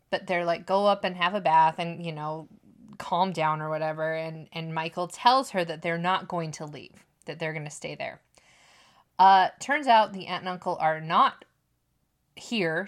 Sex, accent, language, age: female, American, English, 20-39